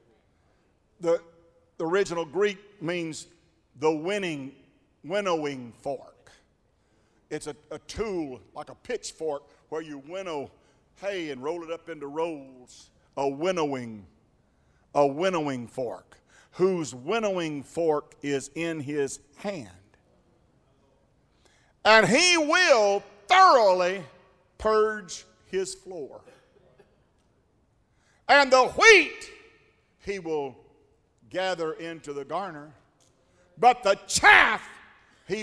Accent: American